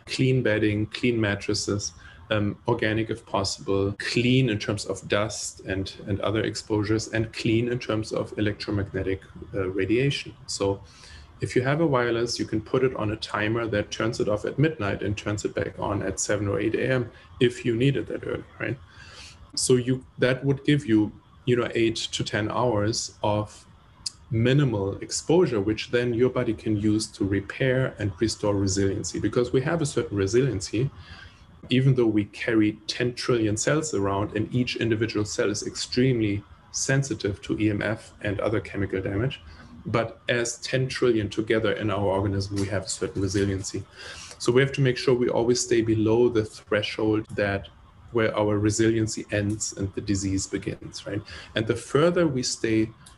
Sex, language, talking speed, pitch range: male, English, 175 wpm, 100-120 Hz